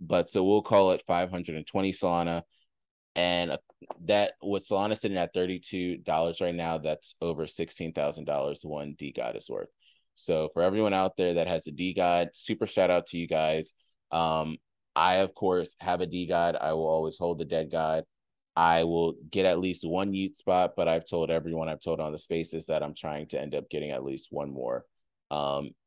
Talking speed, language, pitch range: 190 wpm, English, 80-90 Hz